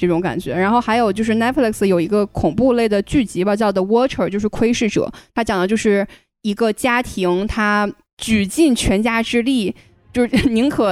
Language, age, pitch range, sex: Chinese, 10-29, 190-235 Hz, female